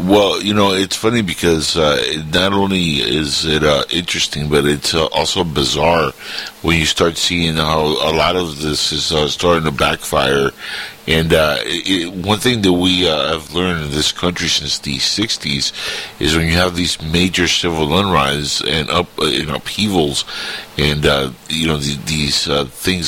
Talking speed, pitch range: 180 wpm, 75-95 Hz